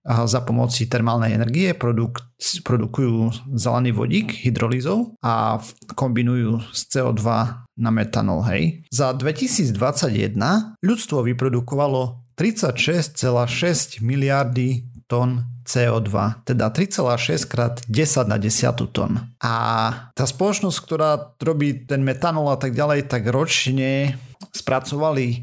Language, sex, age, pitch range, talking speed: Slovak, male, 40-59, 115-145 Hz, 105 wpm